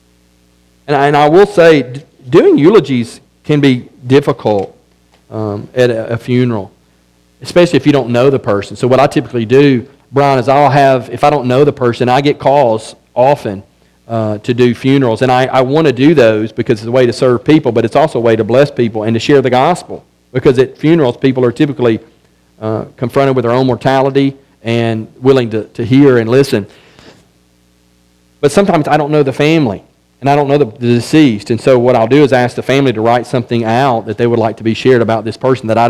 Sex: male